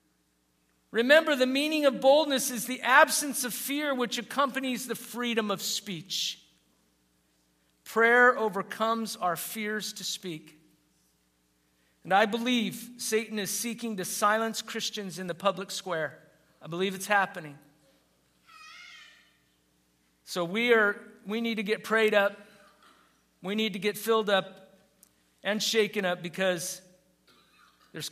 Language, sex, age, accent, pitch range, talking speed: English, male, 50-69, American, 145-230 Hz, 125 wpm